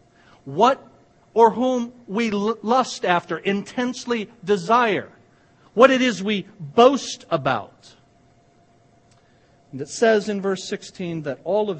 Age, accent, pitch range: 50-69, American, 135-195 Hz